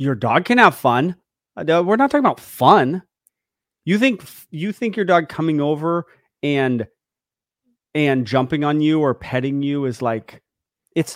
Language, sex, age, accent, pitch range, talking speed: English, male, 30-49, American, 130-175 Hz, 155 wpm